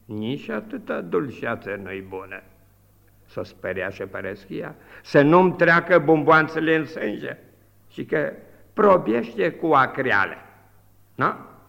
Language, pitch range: Romanian, 100-155 Hz